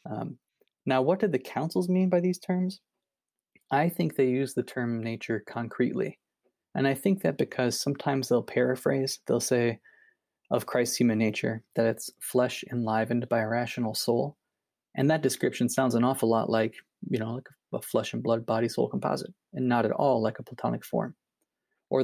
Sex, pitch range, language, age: male, 115-145 Hz, English, 20-39